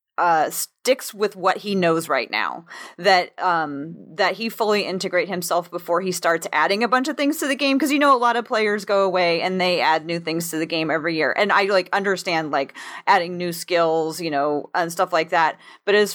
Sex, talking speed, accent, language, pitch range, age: female, 225 wpm, American, English, 165-200 Hz, 30-49